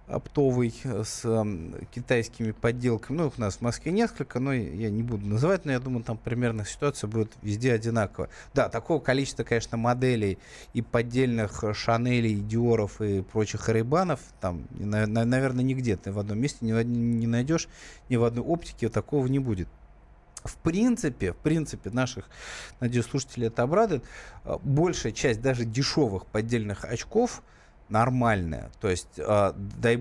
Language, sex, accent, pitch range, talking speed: Russian, male, native, 110-140 Hz, 155 wpm